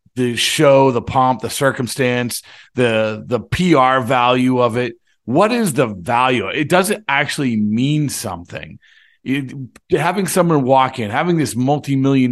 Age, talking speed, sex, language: 40-59, 145 wpm, male, English